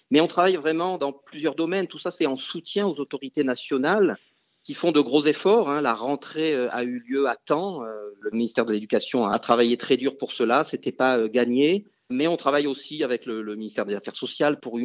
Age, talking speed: 40-59, 210 wpm